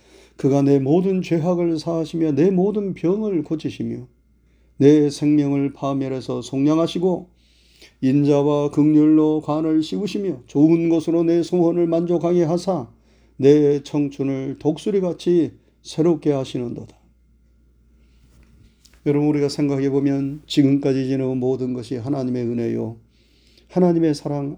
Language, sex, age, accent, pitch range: Korean, male, 40-59, native, 115-160 Hz